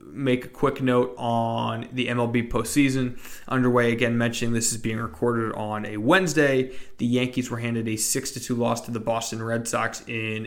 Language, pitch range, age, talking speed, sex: English, 110-130 Hz, 20-39, 190 wpm, male